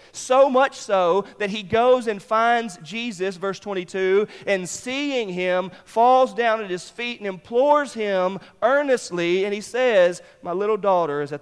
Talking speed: 165 wpm